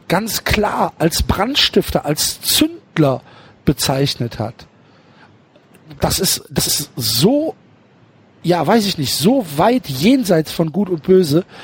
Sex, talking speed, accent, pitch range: male, 125 wpm, German, 150-200 Hz